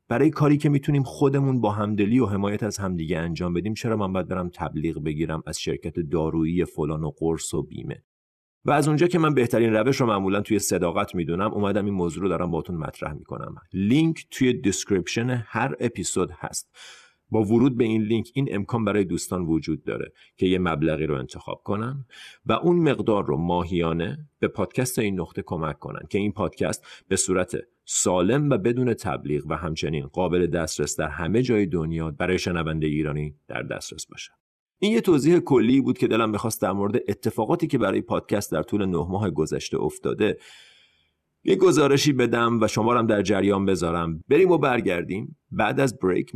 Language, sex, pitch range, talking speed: Persian, male, 85-120 Hz, 175 wpm